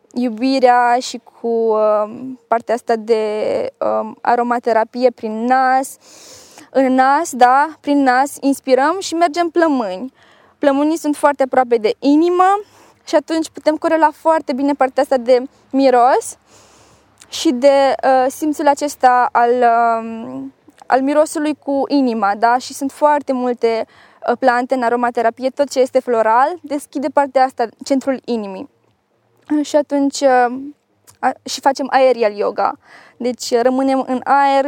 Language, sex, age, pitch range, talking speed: Romanian, female, 20-39, 240-285 Hz, 120 wpm